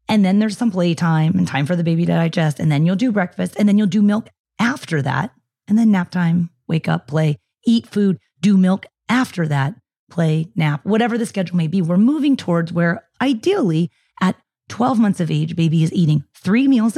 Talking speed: 210 wpm